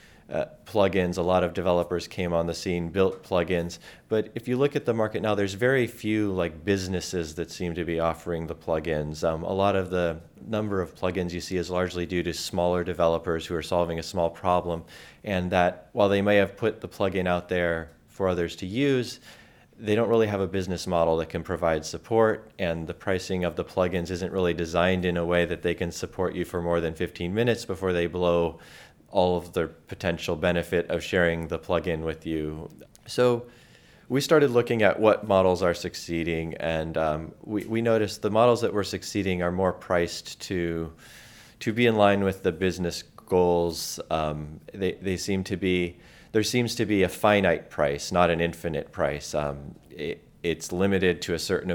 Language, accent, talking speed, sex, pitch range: English, American, 200 wpm, male, 80-95 Hz